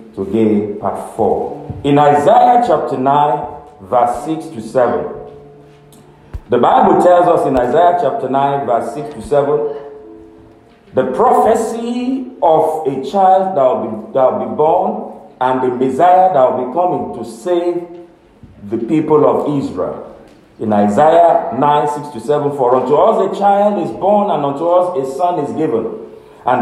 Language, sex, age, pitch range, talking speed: English, male, 50-69, 130-195 Hz, 155 wpm